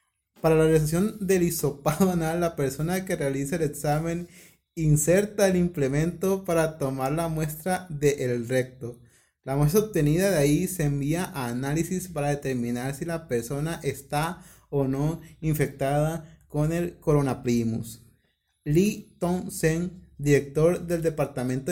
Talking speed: 135 wpm